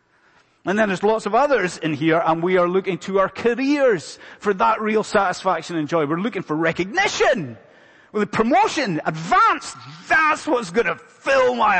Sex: male